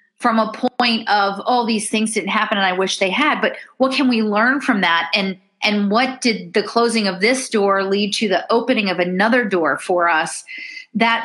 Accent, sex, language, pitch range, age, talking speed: American, female, English, 195-255 Hz, 40-59, 215 wpm